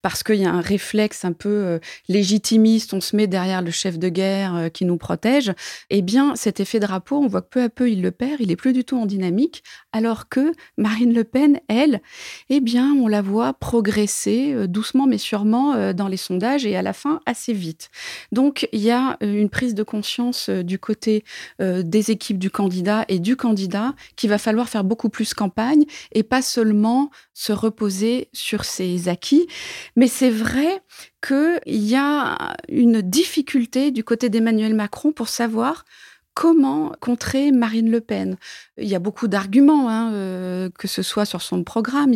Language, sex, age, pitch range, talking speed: French, female, 30-49, 200-260 Hz, 190 wpm